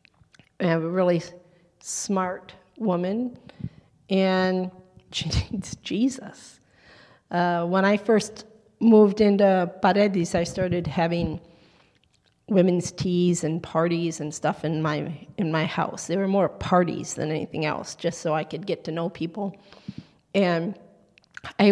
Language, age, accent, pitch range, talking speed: English, 40-59, American, 165-200 Hz, 135 wpm